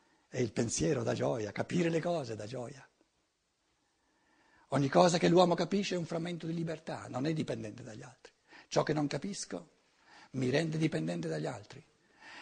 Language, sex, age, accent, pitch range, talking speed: Italian, male, 60-79, native, 120-170 Hz, 165 wpm